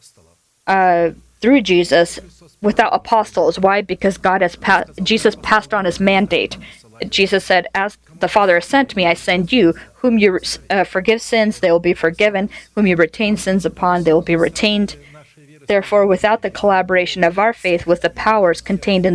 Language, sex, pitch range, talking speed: English, female, 170-210 Hz, 175 wpm